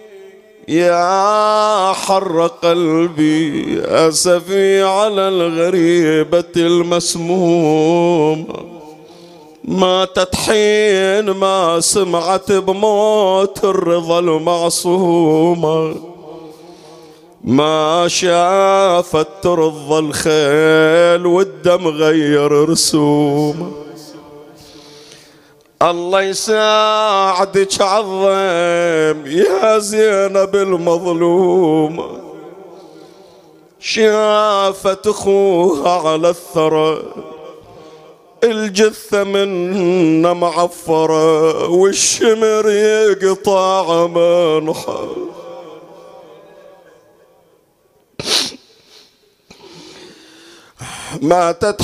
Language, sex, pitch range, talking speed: Arabic, male, 160-195 Hz, 45 wpm